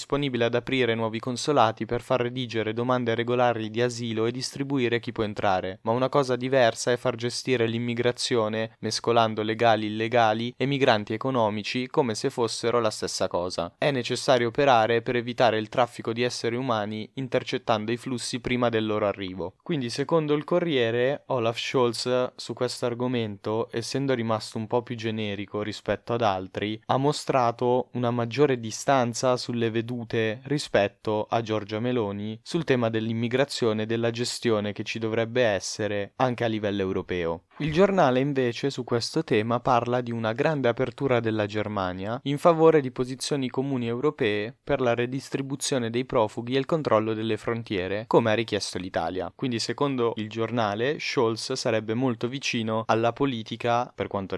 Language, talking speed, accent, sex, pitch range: Italian, 155 wpm, native, male, 110-130 Hz